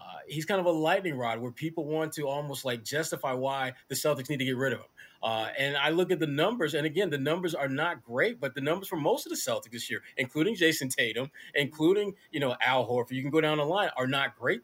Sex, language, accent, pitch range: male, English, American, 135-180 Hz